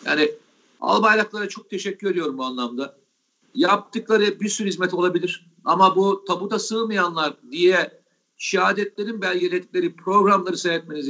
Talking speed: 115 wpm